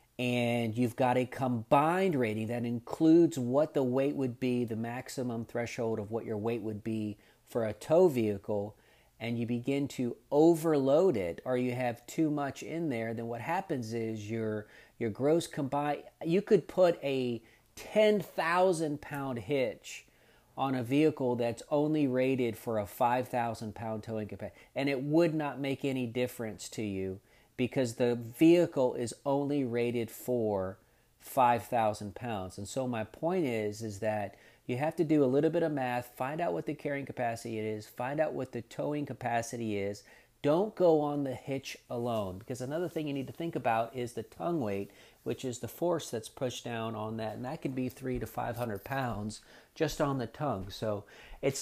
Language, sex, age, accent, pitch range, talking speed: English, male, 40-59, American, 115-150 Hz, 180 wpm